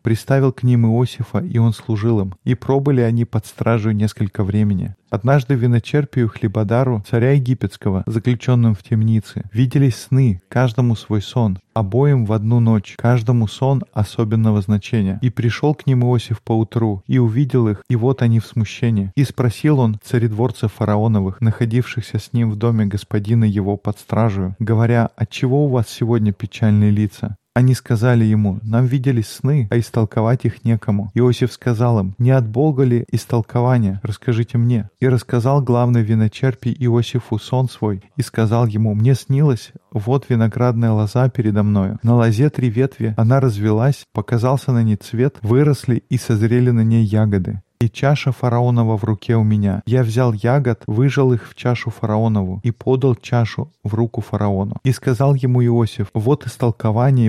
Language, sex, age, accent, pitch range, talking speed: Russian, male, 20-39, native, 110-125 Hz, 160 wpm